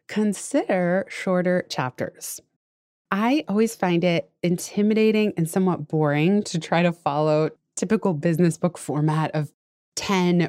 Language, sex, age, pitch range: English, female, 20-39, 165-200 Hz